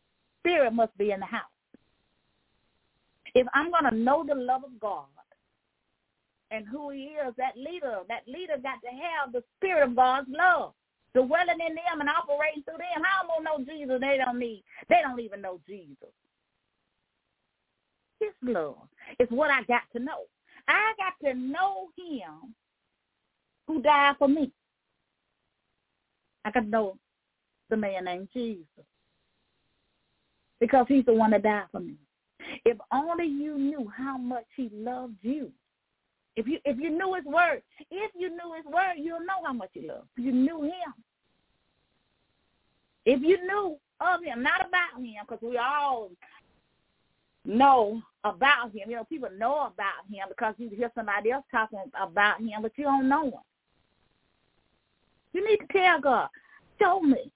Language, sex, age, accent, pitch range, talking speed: English, female, 40-59, American, 240-330 Hz, 165 wpm